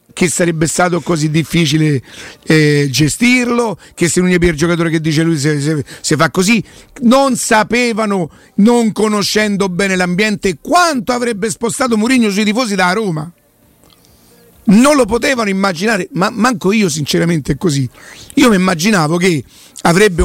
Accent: native